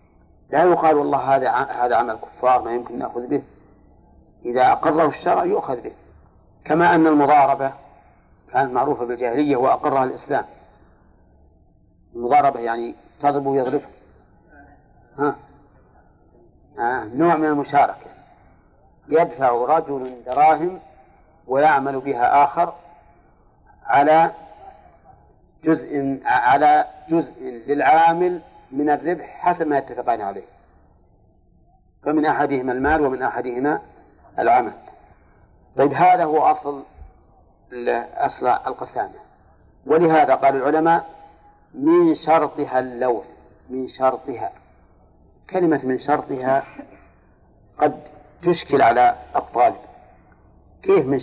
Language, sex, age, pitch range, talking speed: Arabic, male, 50-69, 125-160 Hz, 90 wpm